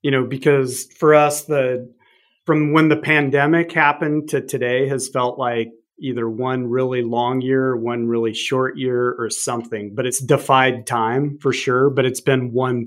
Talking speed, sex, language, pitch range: 175 wpm, male, English, 125-150 Hz